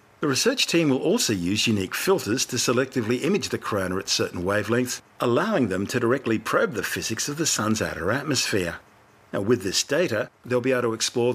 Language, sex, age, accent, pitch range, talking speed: English, male, 50-69, Australian, 100-125 Hz, 195 wpm